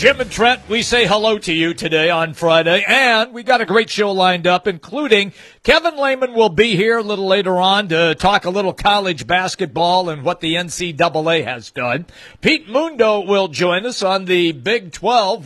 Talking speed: 195 wpm